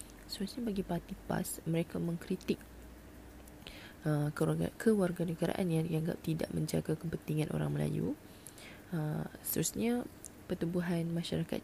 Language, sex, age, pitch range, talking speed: Malay, female, 20-39, 160-180 Hz, 105 wpm